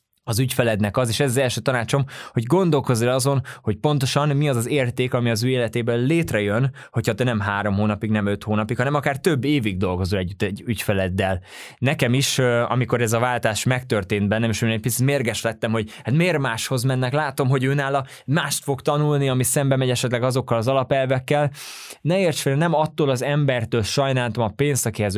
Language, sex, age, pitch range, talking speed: Hungarian, male, 20-39, 110-135 Hz, 190 wpm